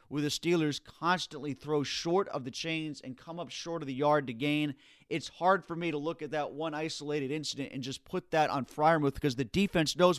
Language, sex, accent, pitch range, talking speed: English, male, American, 135-160 Hz, 230 wpm